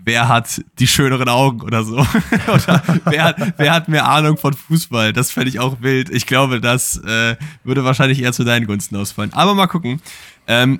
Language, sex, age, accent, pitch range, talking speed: German, male, 10-29, German, 100-130 Hz, 195 wpm